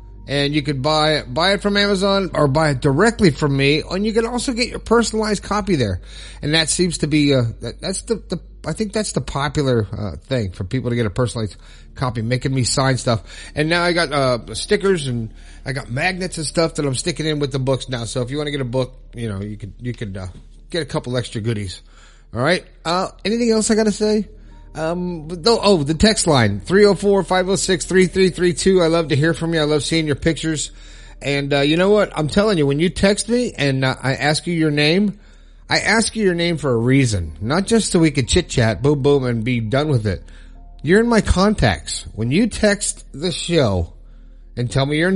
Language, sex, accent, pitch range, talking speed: English, male, American, 120-180 Hz, 230 wpm